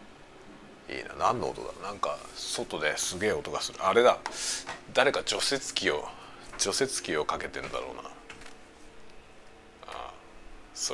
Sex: male